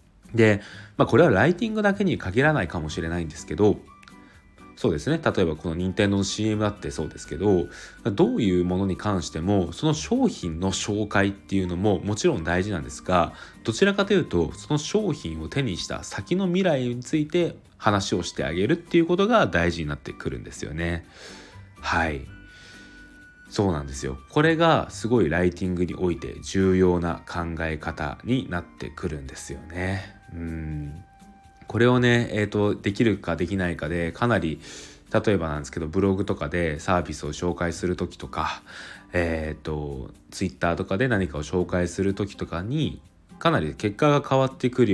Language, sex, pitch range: Japanese, male, 85-115 Hz